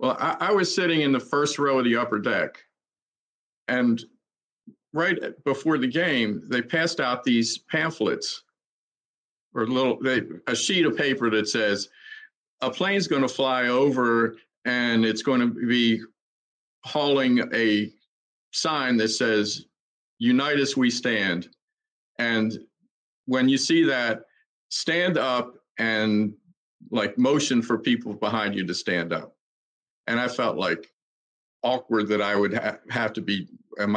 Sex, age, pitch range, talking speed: male, 50-69, 110-140 Hz, 145 wpm